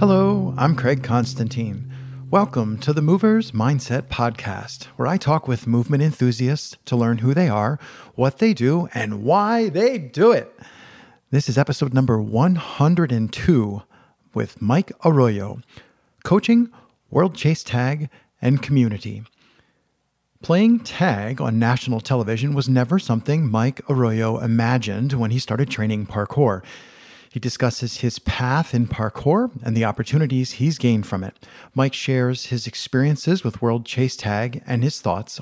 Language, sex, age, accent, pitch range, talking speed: English, male, 40-59, American, 115-150 Hz, 140 wpm